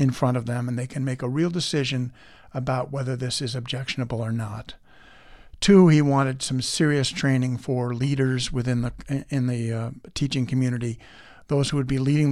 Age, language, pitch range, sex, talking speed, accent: 50-69, English, 125-145 Hz, male, 185 wpm, American